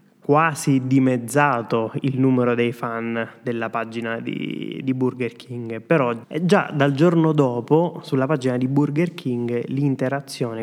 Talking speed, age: 130 wpm, 20-39